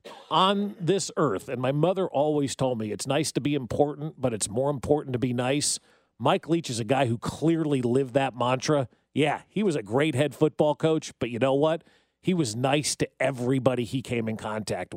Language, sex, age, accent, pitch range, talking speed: English, male, 40-59, American, 130-170 Hz, 210 wpm